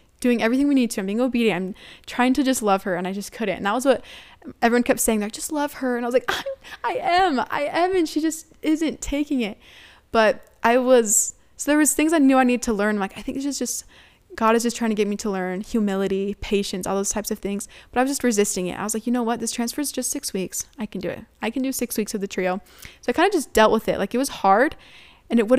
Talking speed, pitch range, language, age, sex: 290 wpm, 205-260 Hz, English, 10-29, female